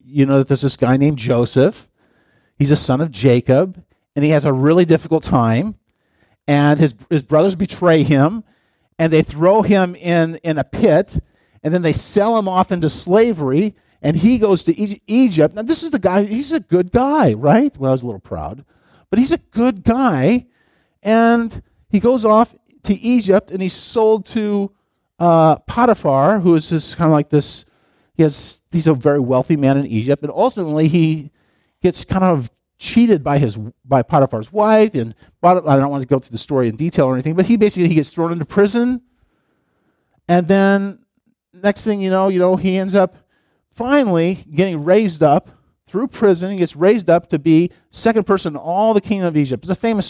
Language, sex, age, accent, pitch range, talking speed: English, male, 50-69, American, 140-205 Hz, 200 wpm